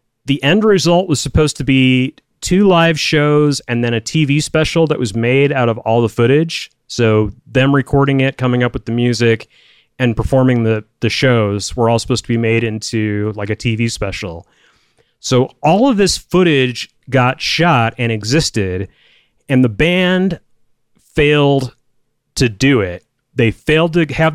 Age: 30-49